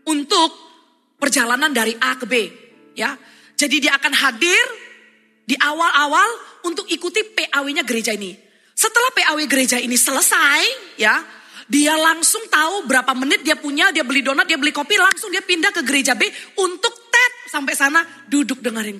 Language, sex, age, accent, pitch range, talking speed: Indonesian, female, 20-39, native, 250-375 Hz, 155 wpm